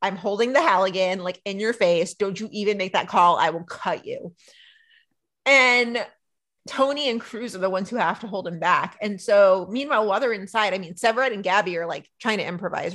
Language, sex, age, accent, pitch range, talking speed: English, female, 30-49, American, 195-265 Hz, 220 wpm